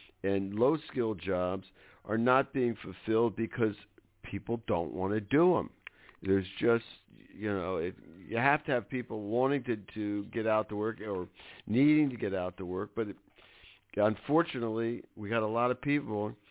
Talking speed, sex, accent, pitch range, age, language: 165 wpm, male, American, 95-120 Hz, 50-69, English